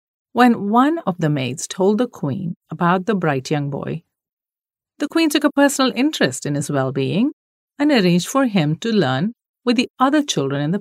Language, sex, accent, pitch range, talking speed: English, female, Indian, 155-245 Hz, 190 wpm